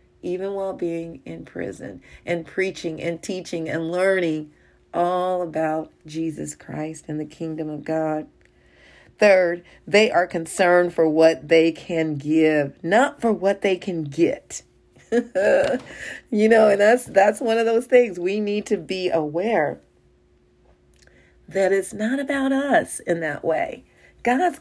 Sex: female